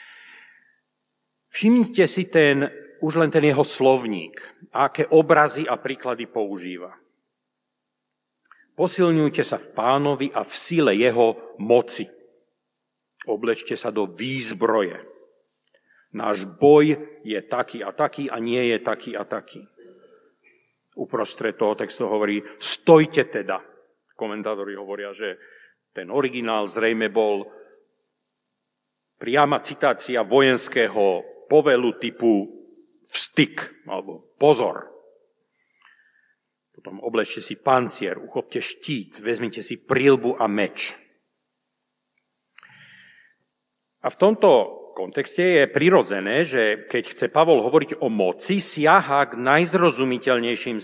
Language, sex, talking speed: Slovak, male, 100 wpm